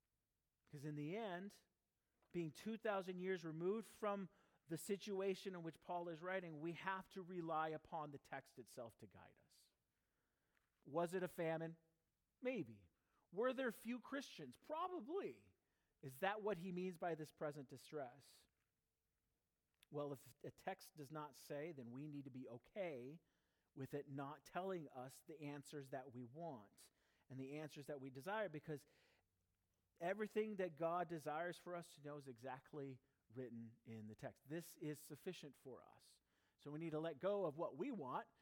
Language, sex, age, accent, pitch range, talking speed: English, male, 40-59, American, 135-175 Hz, 165 wpm